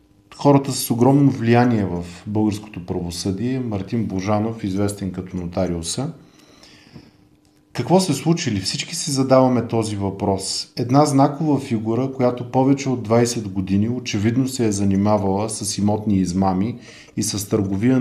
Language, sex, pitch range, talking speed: Bulgarian, male, 100-130 Hz, 125 wpm